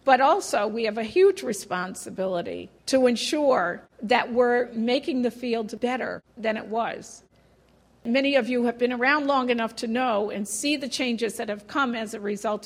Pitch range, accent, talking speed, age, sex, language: 215-255 Hz, American, 180 wpm, 50-69, female, English